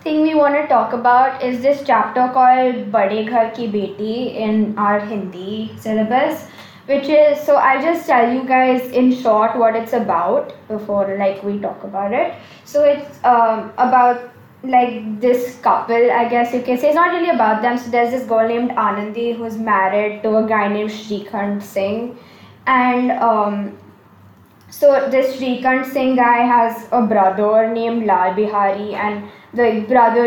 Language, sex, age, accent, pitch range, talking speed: English, female, 10-29, Indian, 215-260 Hz, 165 wpm